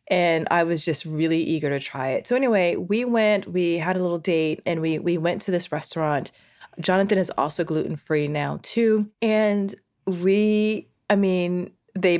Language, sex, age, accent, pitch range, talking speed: English, female, 30-49, American, 150-180 Hz, 175 wpm